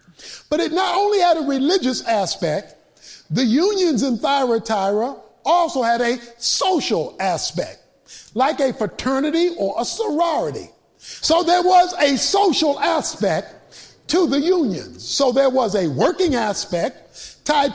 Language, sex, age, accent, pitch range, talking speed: English, male, 50-69, American, 230-320 Hz, 130 wpm